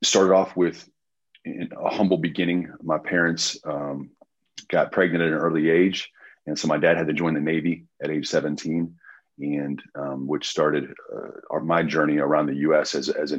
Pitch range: 75-90 Hz